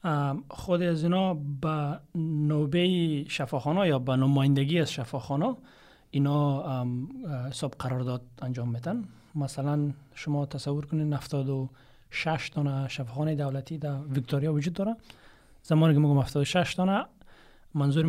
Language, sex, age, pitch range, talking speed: Persian, male, 30-49, 135-155 Hz, 125 wpm